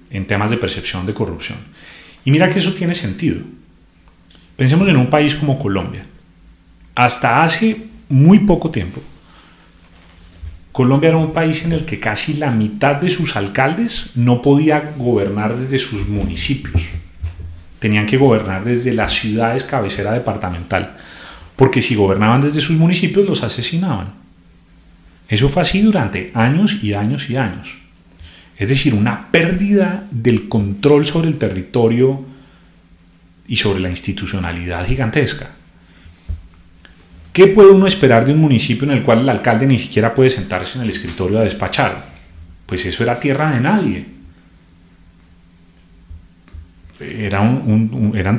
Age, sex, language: 30-49, male, Spanish